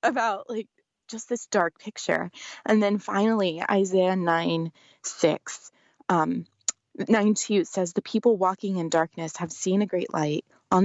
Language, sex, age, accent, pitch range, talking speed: English, female, 20-39, American, 185-235 Hz, 150 wpm